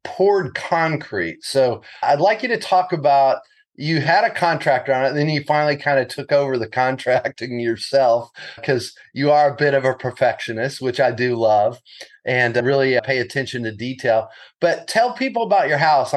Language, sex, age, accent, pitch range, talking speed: English, male, 30-49, American, 120-150 Hz, 185 wpm